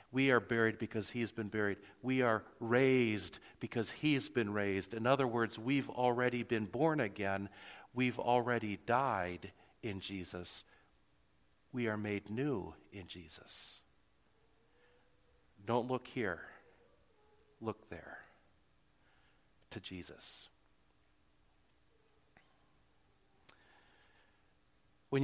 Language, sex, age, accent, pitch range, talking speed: English, male, 50-69, American, 95-120 Hz, 100 wpm